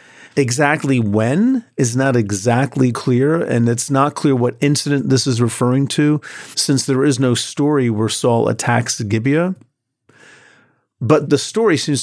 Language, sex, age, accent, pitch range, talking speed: English, male, 40-59, American, 115-140 Hz, 145 wpm